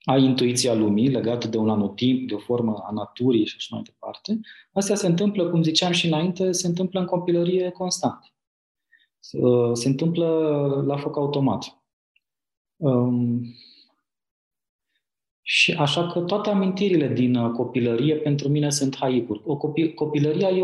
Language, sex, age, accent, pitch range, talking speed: Romanian, male, 20-39, native, 115-155 Hz, 135 wpm